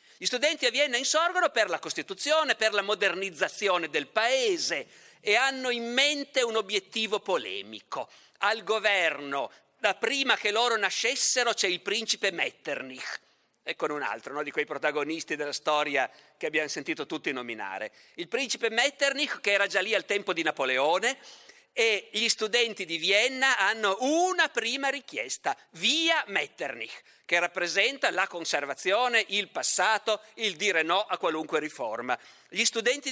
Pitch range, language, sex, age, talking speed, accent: 190-275 Hz, Italian, male, 50-69, 150 wpm, native